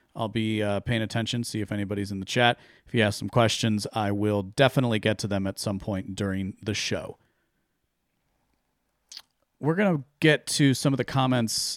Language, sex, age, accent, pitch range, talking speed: English, male, 40-59, American, 100-135 Hz, 185 wpm